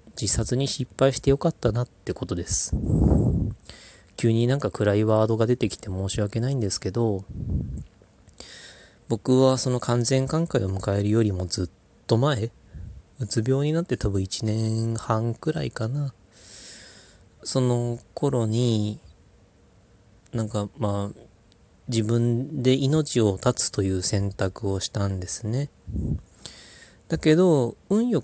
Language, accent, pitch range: Japanese, native, 95-125 Hz